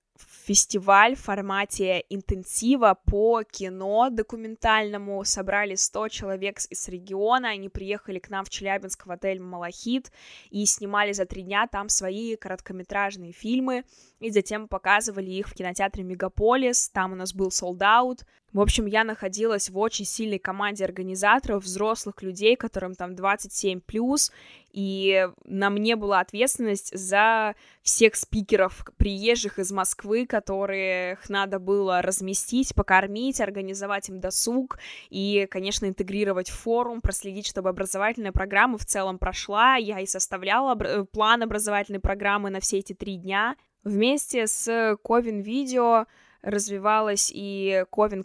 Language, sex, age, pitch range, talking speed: Russian, female, 20-39, 190-220 Hz, 130 wpm